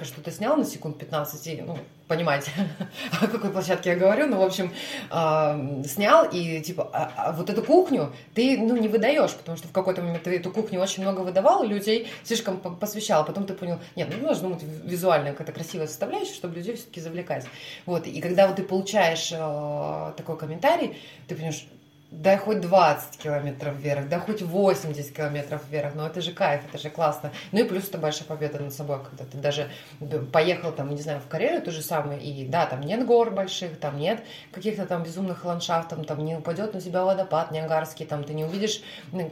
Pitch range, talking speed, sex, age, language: 150-190 Hz, 200 wpm, female, 20-39, Russian